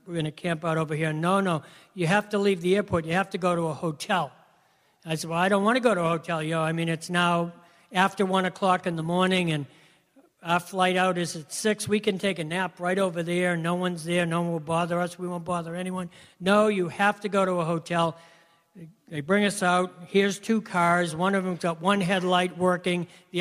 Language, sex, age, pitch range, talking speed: English, male, 60-79, 165-195 Hz, 235 wpm